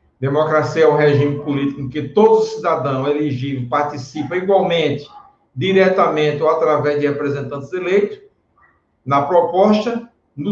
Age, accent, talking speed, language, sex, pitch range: 60-79, Brazilian, 125 wpm, Portuguese, male, 145-185 Hz